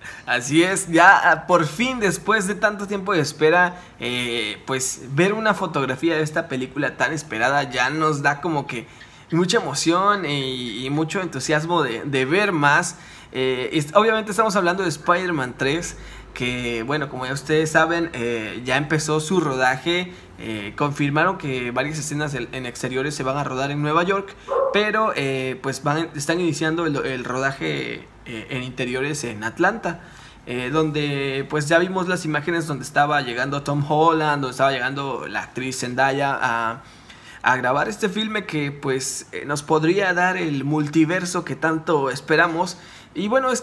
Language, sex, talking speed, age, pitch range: Spanish, male, 160 wpm, 20-39, 130-175 Hz